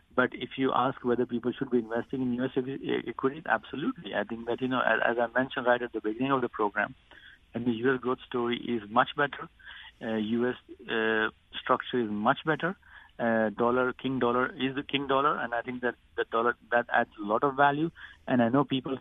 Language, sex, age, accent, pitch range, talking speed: English, male, 50-69, Indian, 115-135 Hz, 210 wpm